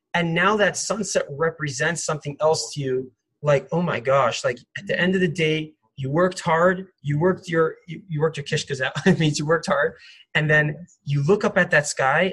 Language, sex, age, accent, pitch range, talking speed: English, male, 20-39, American, 150-200 Hz, 220 wpm